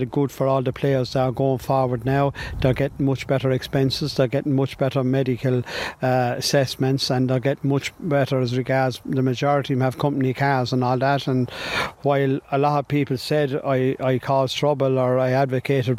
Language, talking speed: English, 190 wpm